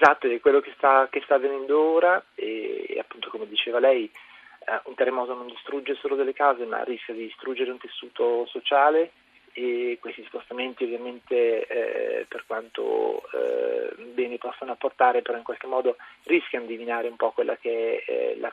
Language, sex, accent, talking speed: Italian, male, native, 175 wpm